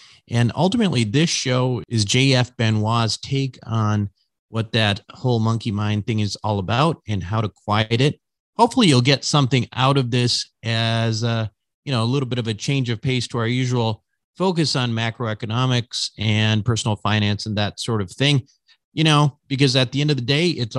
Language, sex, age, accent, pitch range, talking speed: English, male, 40-59, American, 110-135 Hz, 190 wpm